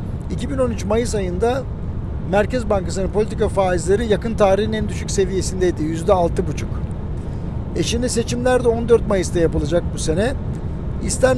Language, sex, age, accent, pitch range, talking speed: Turkish, male, 60-79, native, 185-220 Hz, 125 wpm